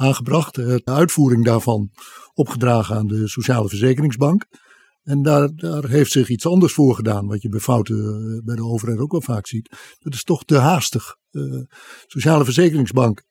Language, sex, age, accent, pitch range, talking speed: Dutch, male, 50-69, Dutch, 120-155 Hz, 165 wpm